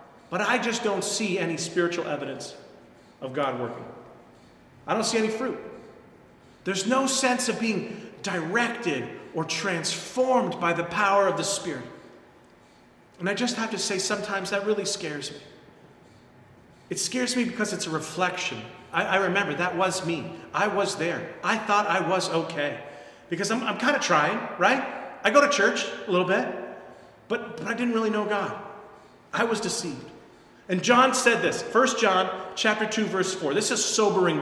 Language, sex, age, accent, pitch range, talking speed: English, male, 40-59, American, 180-230 Hz, 175 wpm